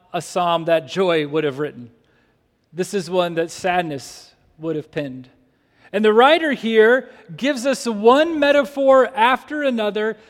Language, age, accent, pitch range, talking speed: English, 40-59, American, 185-255 Hz, 145 wpm